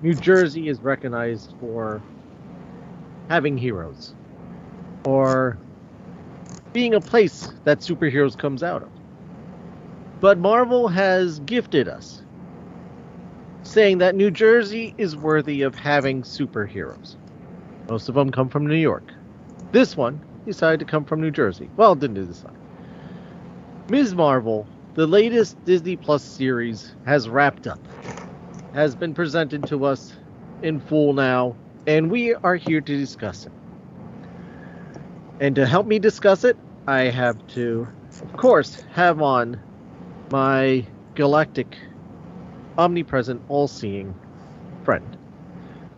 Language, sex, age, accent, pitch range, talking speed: English, male, 40-59, American, 130-180 Hz, 120 wpm